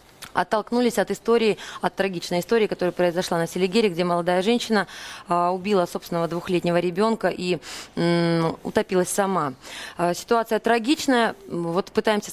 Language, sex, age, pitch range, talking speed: Russian, female, 20-39, 170-215 Hz, 120 wpm